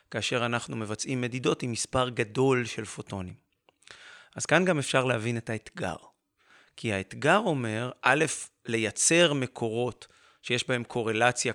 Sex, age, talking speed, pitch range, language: male, 30-49, 130 wpm, 115-140 Hz, Hebrew